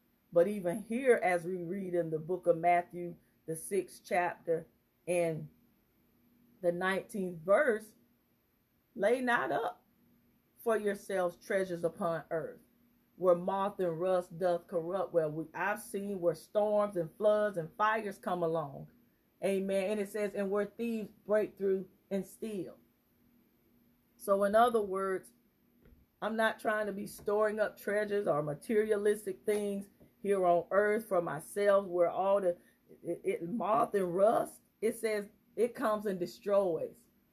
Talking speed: 140 wpm